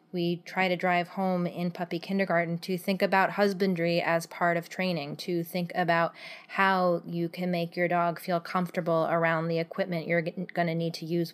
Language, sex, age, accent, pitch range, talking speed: English, female, 20-39, American, 170-195 Hz, 185 wpm